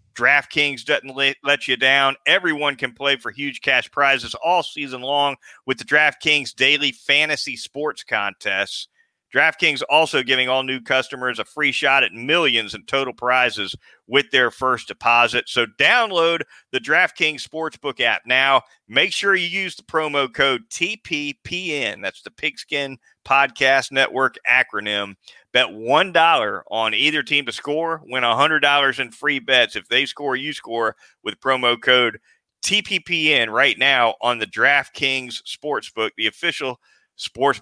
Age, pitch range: 40-59, 125-150 Hz